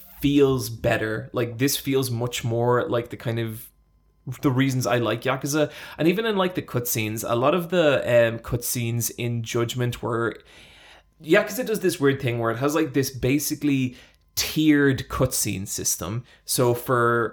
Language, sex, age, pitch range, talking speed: English, male, 20-39, 115-130 Hz, 165 wpm